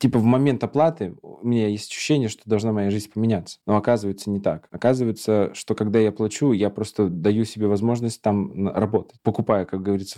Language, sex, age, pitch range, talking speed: Russian, male, 20-39, 100-120 Hz, 190 wpm